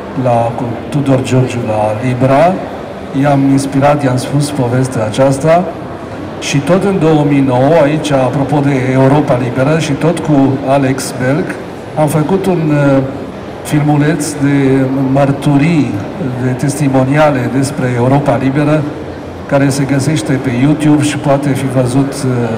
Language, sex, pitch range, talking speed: English, male, 125-145 Hz, 120 wpm